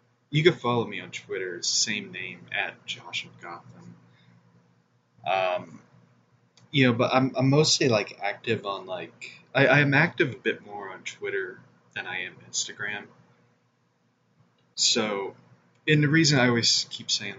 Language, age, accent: English, 20-39, American